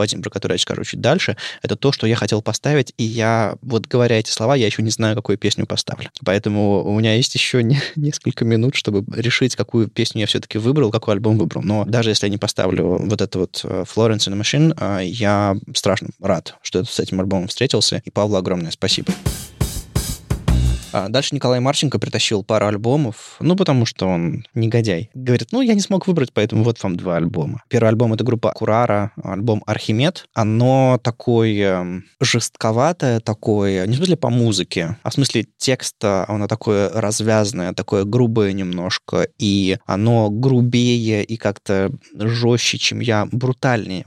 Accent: native